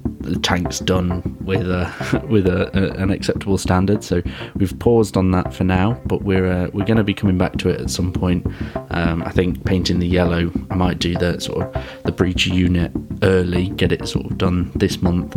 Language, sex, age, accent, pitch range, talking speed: English, male, 20-39, British, 90-105 Hz, 210 wpm